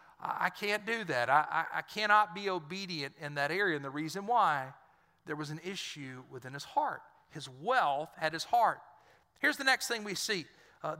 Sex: male